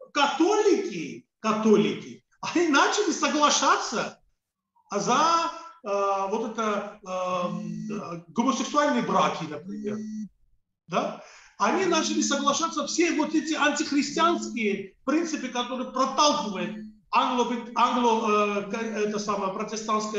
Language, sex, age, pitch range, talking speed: Russian, male, 40-59, 200-265 Hz, 70 wpm